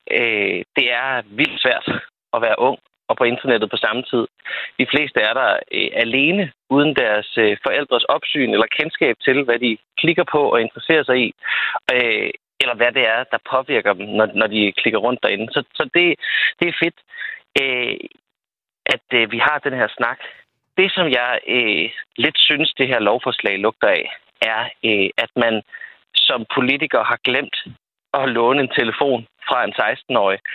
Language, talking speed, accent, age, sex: Danish, 175 wpm, native, 30-49, male